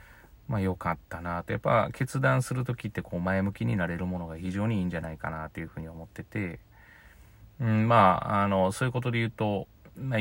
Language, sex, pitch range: Japanese, male, 90-115 Hz